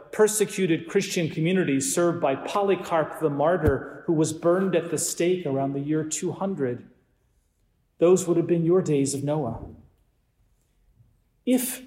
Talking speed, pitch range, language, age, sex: 135 wpm, 135-170 Hz, English, 40-59, male